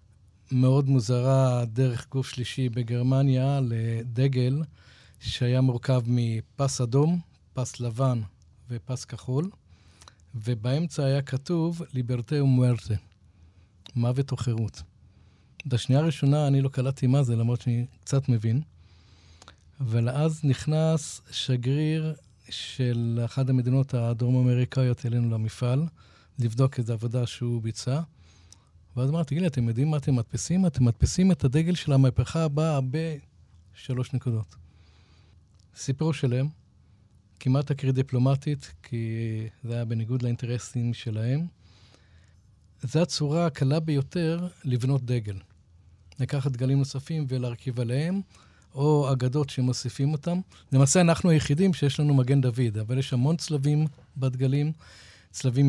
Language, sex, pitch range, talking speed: Hebrew, male, 115-140 Hz, 115 wpm